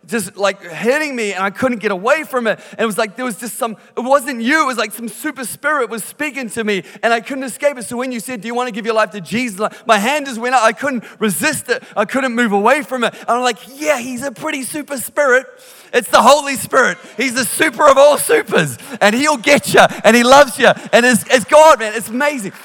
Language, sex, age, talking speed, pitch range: English, male, 30-49, 260 wpm, 180-235 Hz